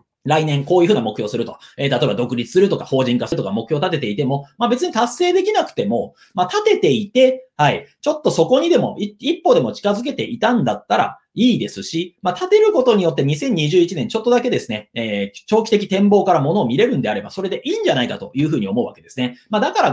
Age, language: 30-49, Japanese